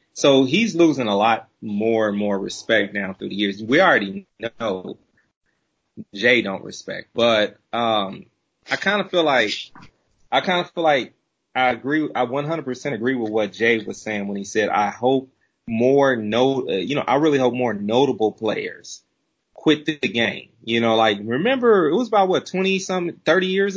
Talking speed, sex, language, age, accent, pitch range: 185 wpm, male, English, 30-49, American, 115-165 Hz